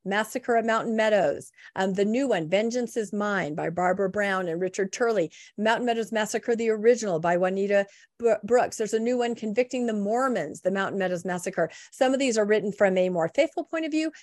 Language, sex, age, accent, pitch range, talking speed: English, female, 40-59, American, 200-270 Hz, 205 wpm